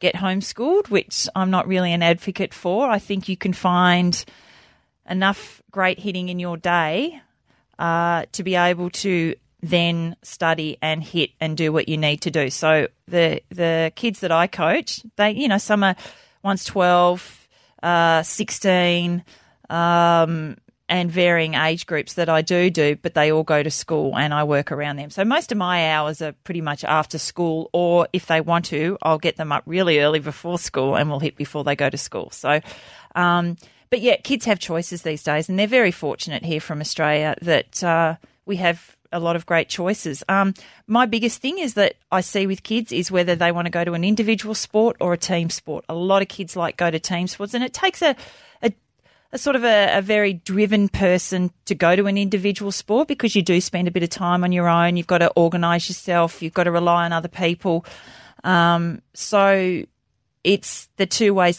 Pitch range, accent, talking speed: 165-195 Hz, Australian, 205 wpm